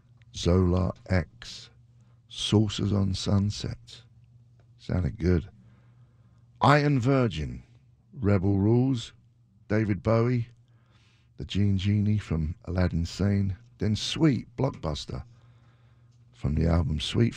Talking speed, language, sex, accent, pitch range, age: 90 wpm, English, male, British, 95-120 Hz, 60-79